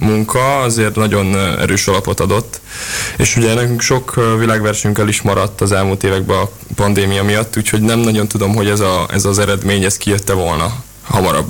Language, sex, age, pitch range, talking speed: Hungarian, male, 20-39, 100-110 Hz, 170 wpm